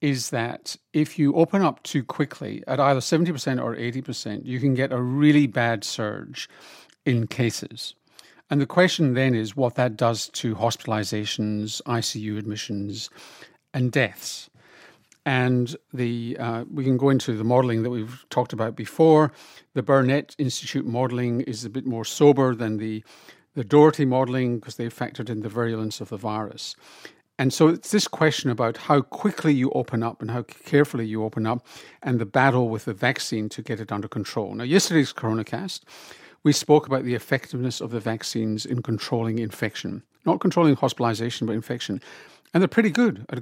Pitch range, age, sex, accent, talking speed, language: 115-145 Hz, 50-69, male, British, 175 wpm, English